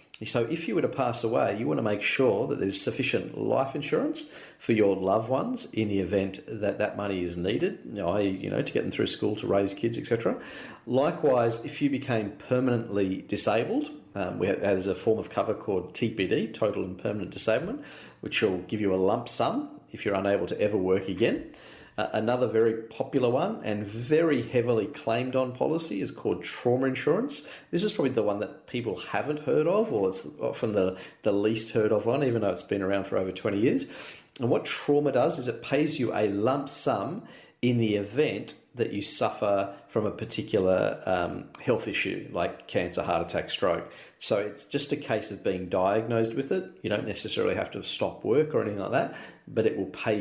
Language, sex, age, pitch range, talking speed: English, male, 40-59, 100-130 Hz, 200 wpm